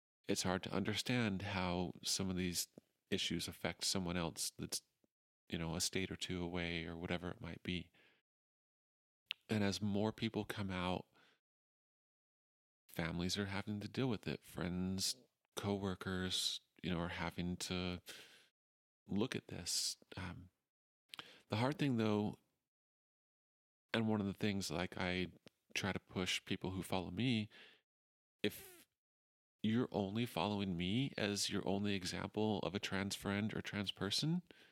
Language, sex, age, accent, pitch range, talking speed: English, male, 40-59, American, 90-105 Hz, 140 wpm